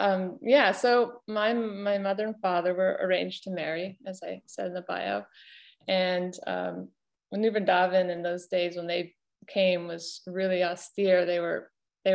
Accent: American